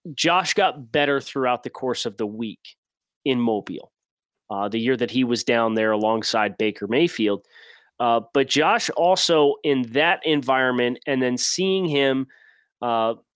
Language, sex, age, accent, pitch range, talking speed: English, male, 30-49, American, 120-145 Hz, 155 wpm